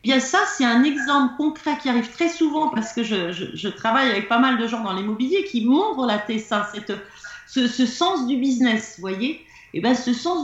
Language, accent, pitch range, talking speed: French, French, 225-285 Hz, 225 wpm